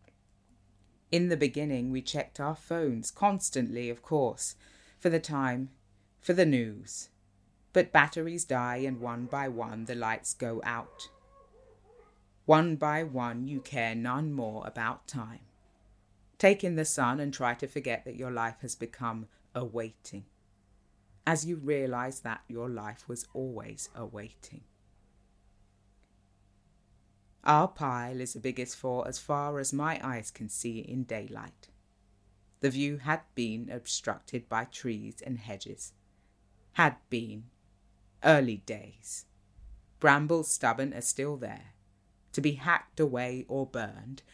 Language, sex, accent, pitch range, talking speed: English, female, British, 100-135 Hz, 135 wpm